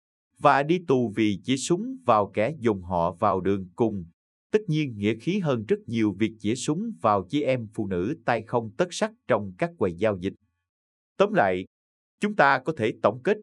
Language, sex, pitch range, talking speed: Vietnamese, male, 100-145 Hz, 200 wpm